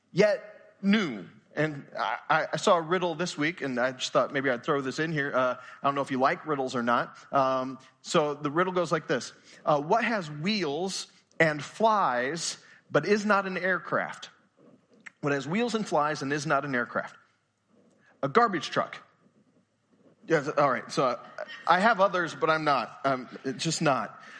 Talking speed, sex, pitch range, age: 180 wpm, male, 150-205 Hz, 30-49